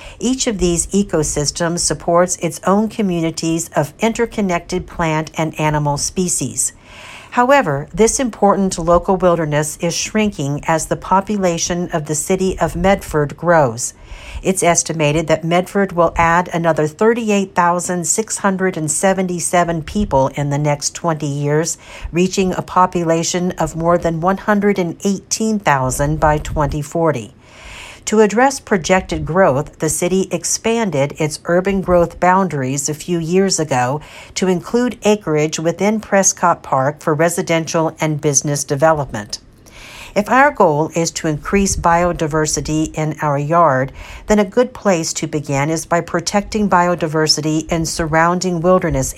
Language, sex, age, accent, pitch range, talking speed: English, female, 60-79, American, 150-185 Hz, 125 wpm